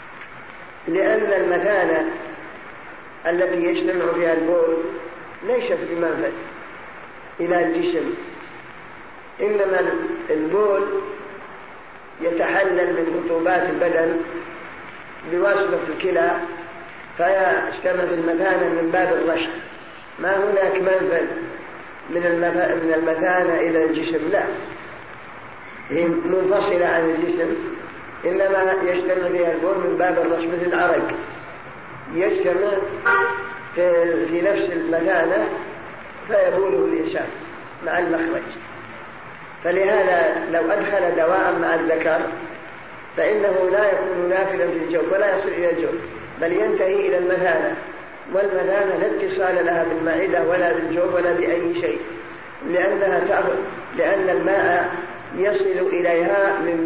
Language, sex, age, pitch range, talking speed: Arabic, female, 40-59, 170-190 Hz, 95 wpm